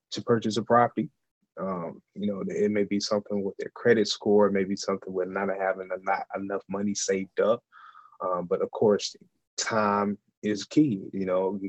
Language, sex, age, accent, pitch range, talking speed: English, male, 20-39, American, 95-110 Hz, 180 wpm